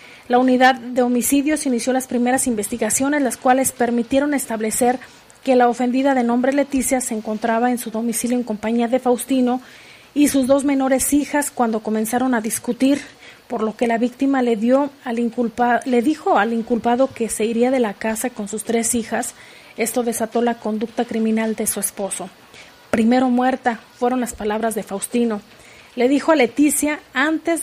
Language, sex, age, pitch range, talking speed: Spanish, female, 40-59, 225-260 Hz, 165 wpm